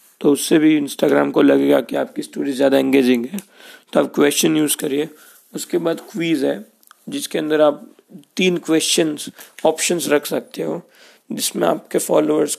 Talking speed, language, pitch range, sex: 155 wpm, Hindi, 140-160 Hz, male